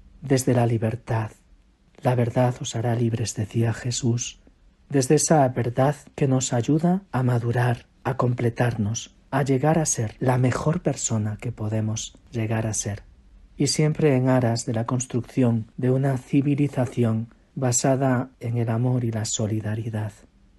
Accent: Spanish